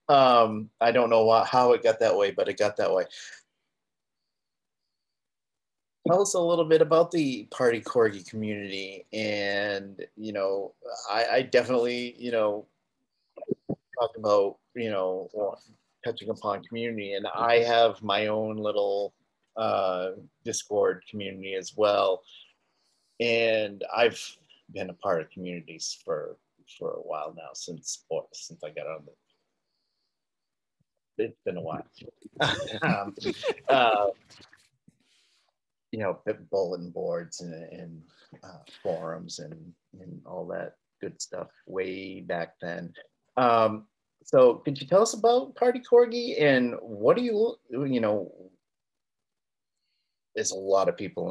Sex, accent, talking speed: male, American, 130 wpm